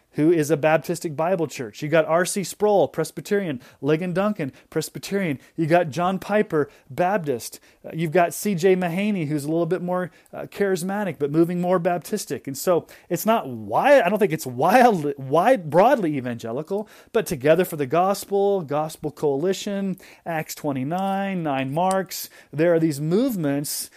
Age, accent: 30-49, American